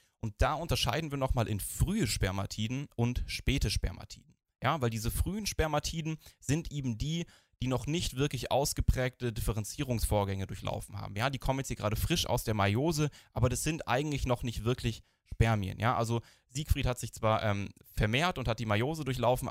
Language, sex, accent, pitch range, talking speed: German, male, German, 105-130 Hz, 180 wpm